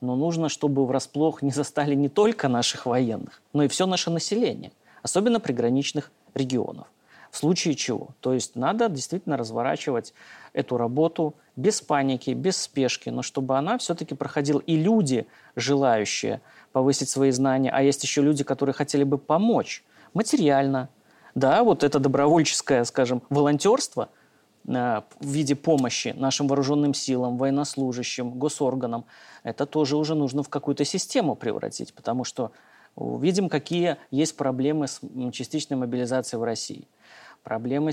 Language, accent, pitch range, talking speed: Russian, native, 130-150 Hz, 135 wpm